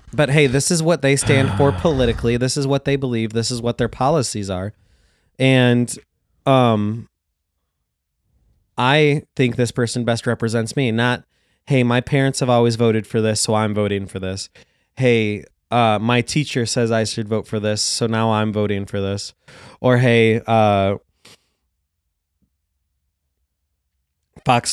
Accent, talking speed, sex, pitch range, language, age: American, 155 wpm, male, 95-120 Hz, English, 20-39